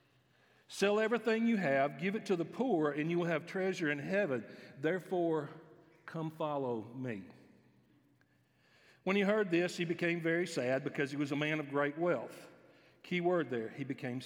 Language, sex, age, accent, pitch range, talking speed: English, male, 50-69, American, 130-175 Hz, 175 wpm